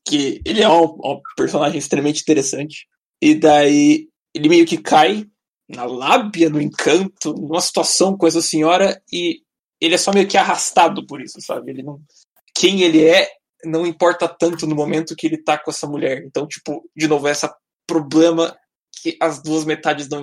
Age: 20-39